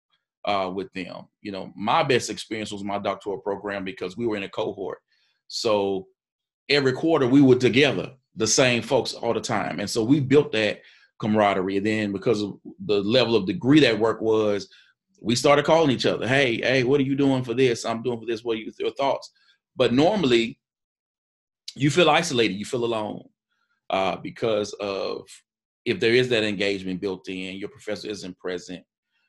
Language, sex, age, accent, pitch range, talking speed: English, male, 30-49, American, 100-135 Hz, 180 wpm